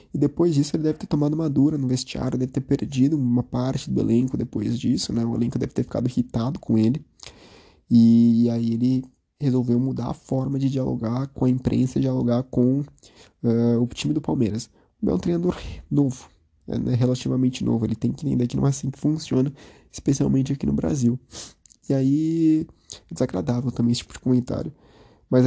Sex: male